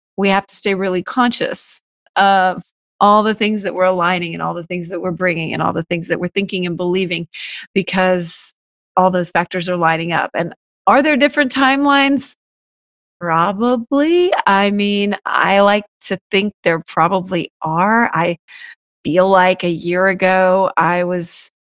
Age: 30-49